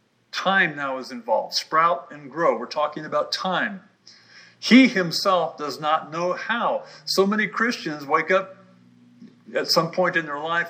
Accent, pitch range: American, 135-190 Hz